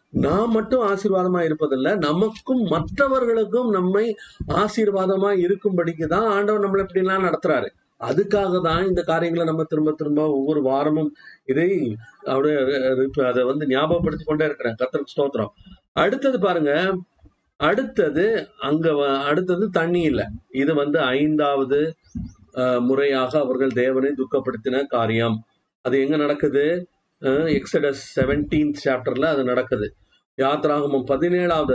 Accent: native